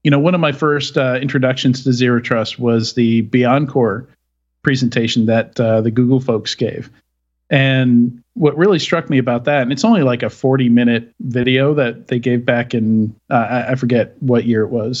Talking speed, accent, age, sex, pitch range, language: 190 wpm, American, 40-59, male, 120-145 Hz, English